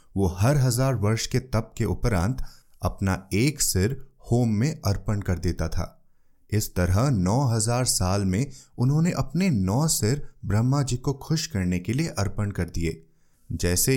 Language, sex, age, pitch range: Hindi, male, 30-49, 95-140 Hz